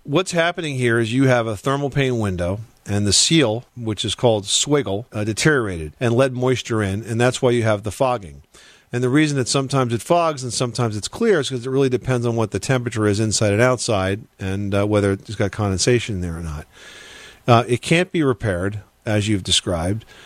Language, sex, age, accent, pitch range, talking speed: English, male, 40-59, American, 105-125 Hz, 210 wpm